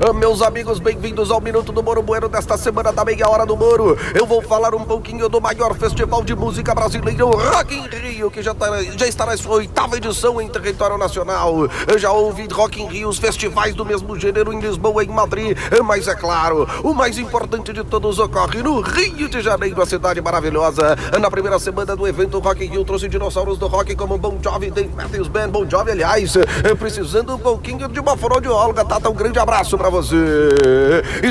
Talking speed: 210 wpm